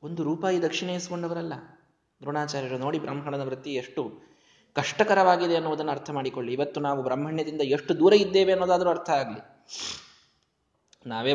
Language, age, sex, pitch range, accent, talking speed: Kannada, 20-39, male, 125-160 Hz, native, 115 wpm